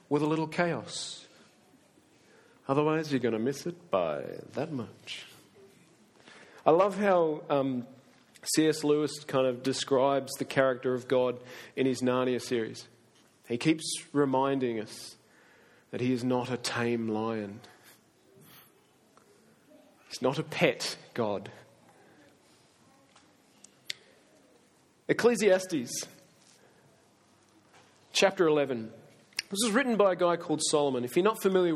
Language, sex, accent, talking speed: English, male, Australian, 115 wpm